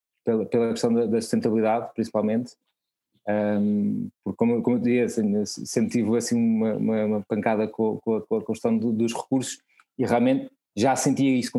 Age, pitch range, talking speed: 20-39, 115-150 Hz, 185 wpm